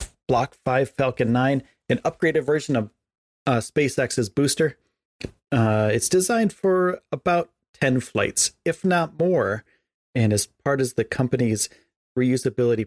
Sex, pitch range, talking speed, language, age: male, 110-145 Hz, 130 wpm, English, 40-59